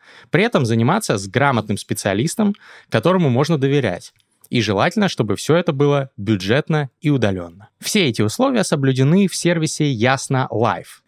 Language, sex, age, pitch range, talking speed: Russian, male, 20-39, 110-160 Hz, 135 wpm